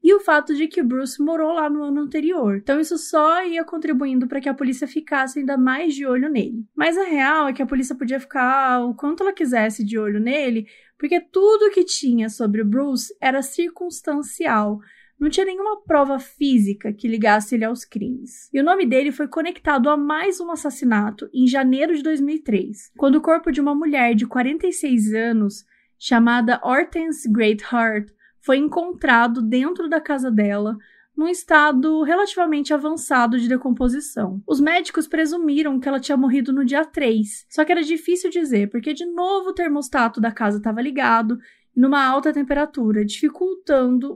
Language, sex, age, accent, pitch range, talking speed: Portuguese, female, 20-39, Brazilian, 240-315 Hz, 175 wpm